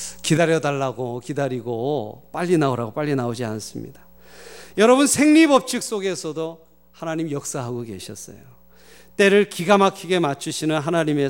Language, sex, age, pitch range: Korean, male, 40-59, 115-180 Hz